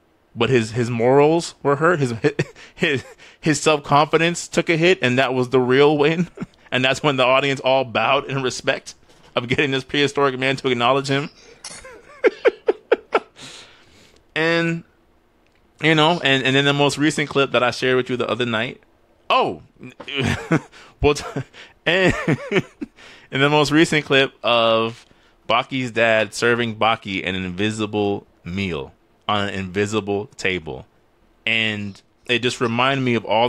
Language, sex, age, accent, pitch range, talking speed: English, male, 20-39, American, 110-140 Hz, 145 wpm